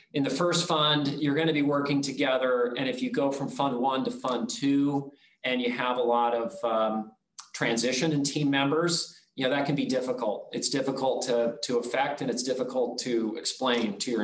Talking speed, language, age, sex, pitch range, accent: 205 wpm, English, 40-59, male, 120-155 Hz, American